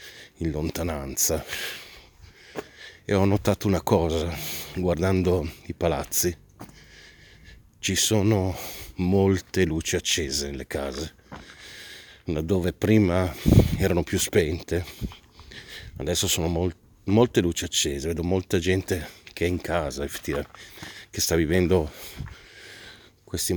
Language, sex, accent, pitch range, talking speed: Italian, male, native, 80-95 Hz, 95 wpm